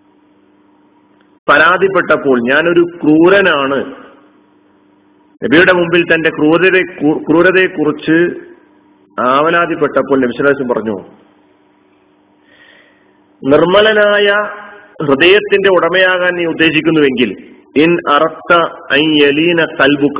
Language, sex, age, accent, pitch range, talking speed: Malayalam, male, 40-59, native, 150-200 Hz, 50 wpm